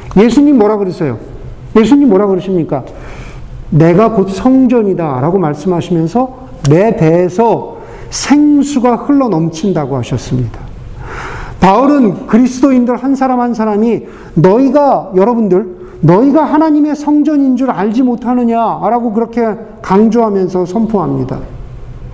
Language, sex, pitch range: Korean, male, 175-265 Hz